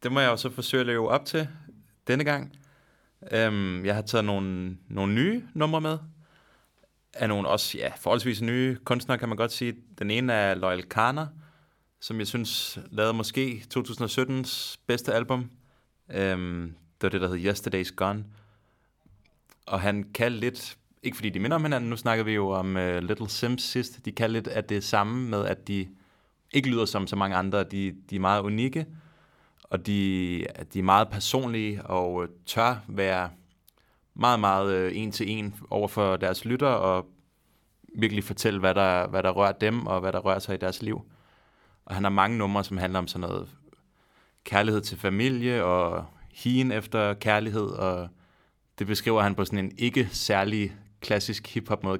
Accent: native